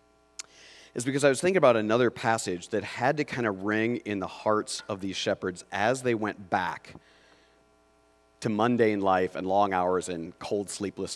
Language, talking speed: English, 175 wpm